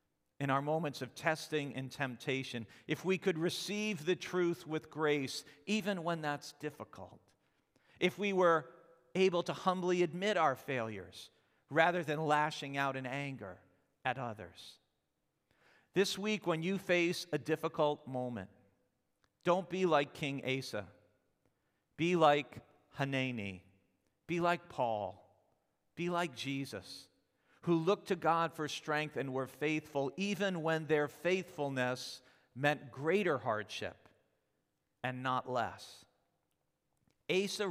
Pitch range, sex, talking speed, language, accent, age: 130-165 Hz, male, 125 wpm, English, American, 50-69